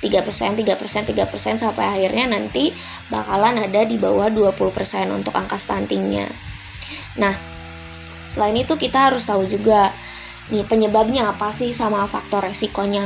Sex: female